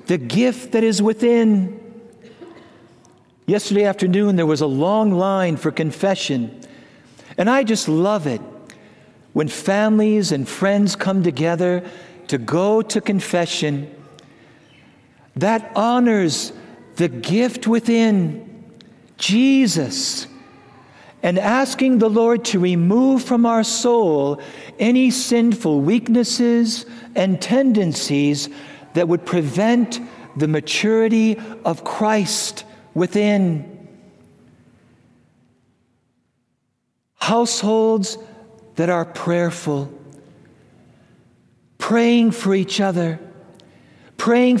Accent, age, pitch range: American, 60-79, 170-225 Hz